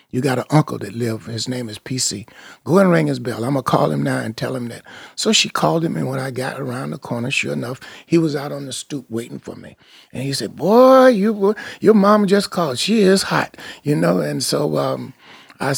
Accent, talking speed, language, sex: American, 245 wpm, English, male